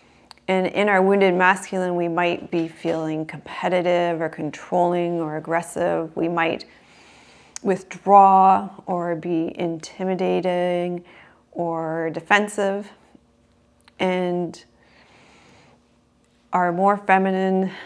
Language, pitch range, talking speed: English, 170-190 Hz, 85 wpm